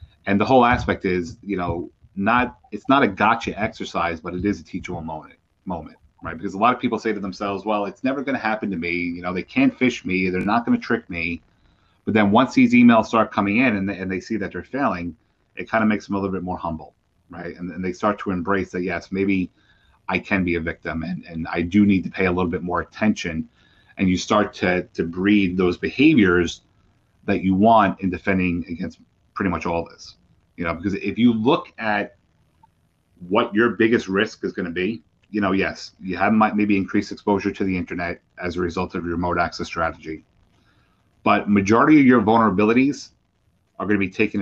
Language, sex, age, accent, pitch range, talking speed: English, male, 30-49, American, 90-105 Hz, 225 wpm